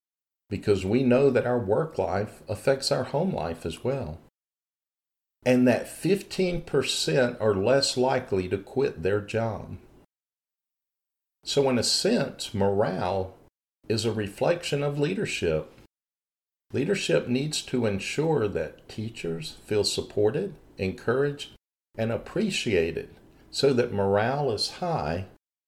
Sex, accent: male, American